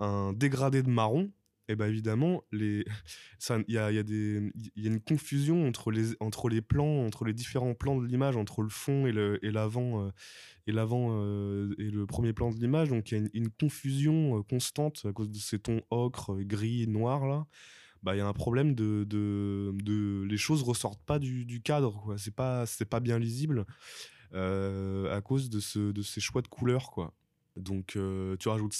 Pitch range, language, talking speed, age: 105-130 Hz, French, 215 wpm, 20-39